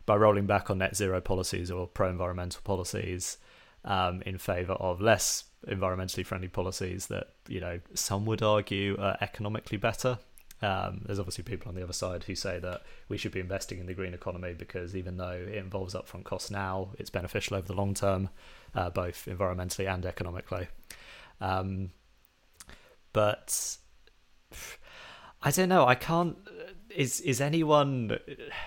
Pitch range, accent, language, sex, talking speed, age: 95-110 Hz, British, English, male, 155 wpm, 30-49